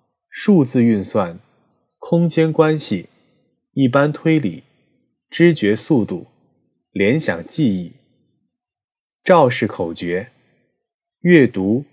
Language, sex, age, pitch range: Chinese, male, 20-39, 115-175 Hz